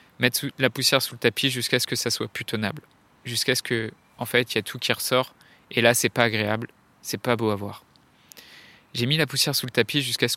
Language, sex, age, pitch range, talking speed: French, male, 20-39, 115-135 Hz, 250 wpm